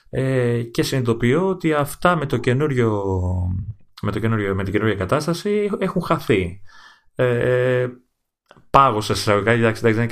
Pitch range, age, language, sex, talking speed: 100-135 Hz, 30-49, Greek, male, 155 wpm